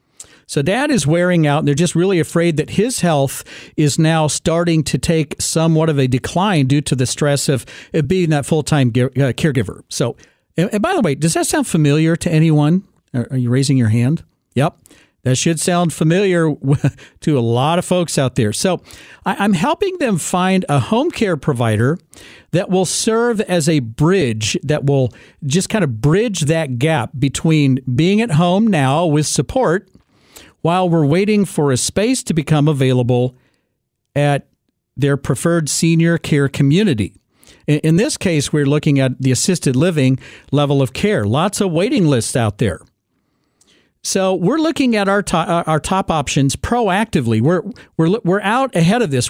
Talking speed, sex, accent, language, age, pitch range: 170 wpm, male, American, English, 50-69, 140-180 Hz